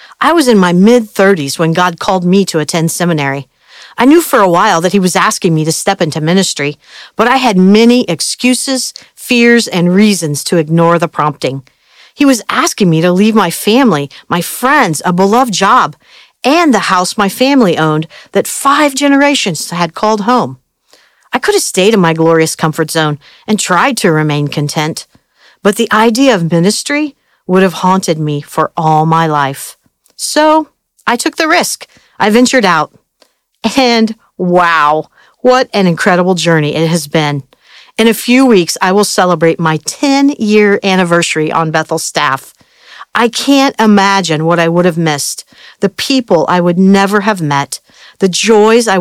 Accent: American